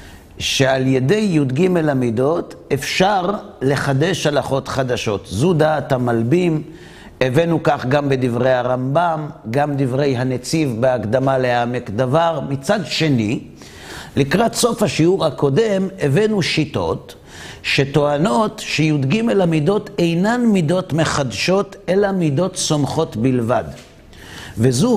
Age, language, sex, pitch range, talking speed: 50-69, Hebrew, male, 130-185 Hz, 100 wpm